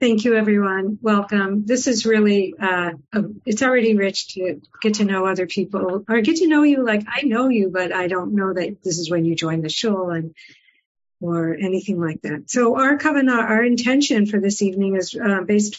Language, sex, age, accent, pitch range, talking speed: English, female, 50-69, American, 195-230 Hz, 210 wpm